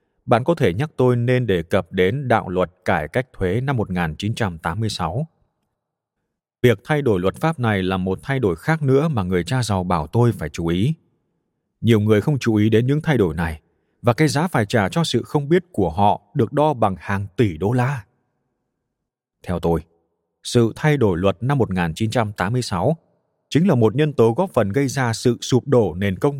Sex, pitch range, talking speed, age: male, 95-130 Hz, 200 wpm, 20-39